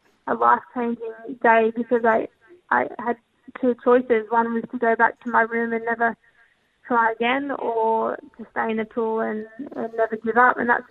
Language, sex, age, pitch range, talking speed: English, female, 10-29, 225-240 Hz, 185 wpm